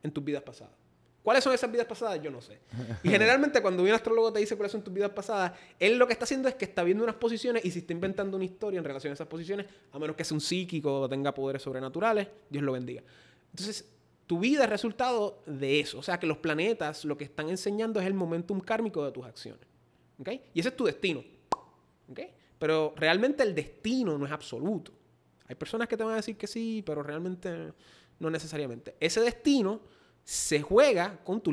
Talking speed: 220 wpm